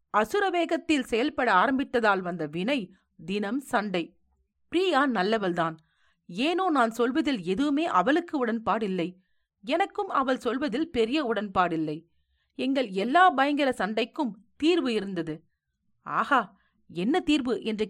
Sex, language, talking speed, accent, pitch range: female, Tamil, 100 wpm, native, 200-290 Hz